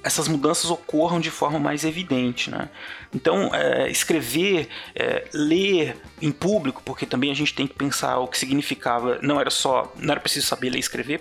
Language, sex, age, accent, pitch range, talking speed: Portuguese, male, 30-49, Brazilian, 135-175 Hz, 185 wpm